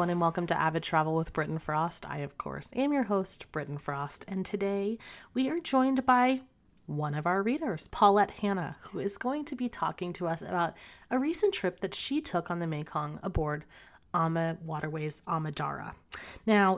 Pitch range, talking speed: 160-215 Hz, 180 wpm